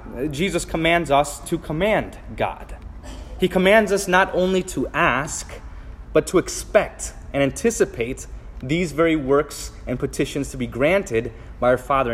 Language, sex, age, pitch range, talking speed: English, male, 20-39, 125-180 Hz, 145 wpm